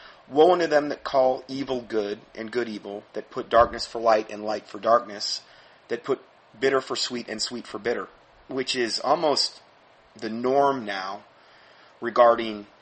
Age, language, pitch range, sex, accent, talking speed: 30-49, English, 110-130 Hz, male, American, 165 wpm